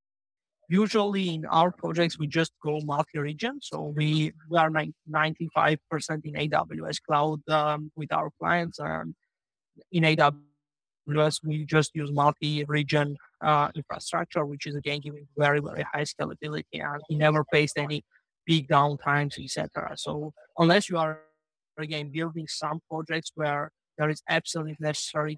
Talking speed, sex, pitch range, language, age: 140 wpm, male, 150-160 Hz, English, 30-49